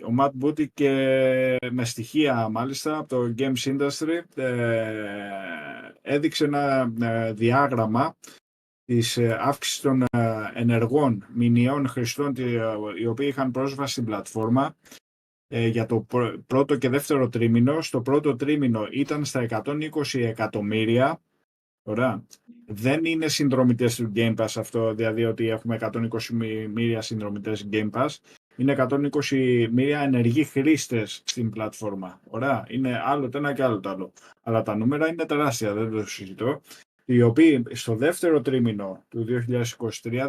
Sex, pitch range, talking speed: male, 115-140 Hz, 125 wpm